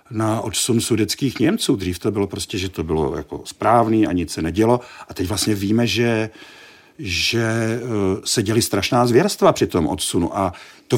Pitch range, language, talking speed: 90-110 Hz, Czech, 175 wpm